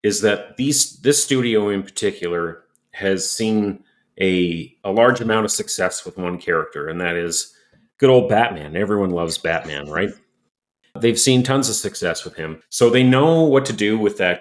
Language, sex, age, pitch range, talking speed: English, male, 40-59, 85-110 Hz, 175 wpm